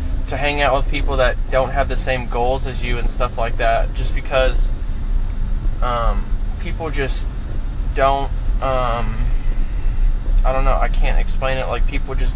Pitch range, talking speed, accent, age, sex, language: 100-135 Hz, 165 wpm, American, 20-39, male, English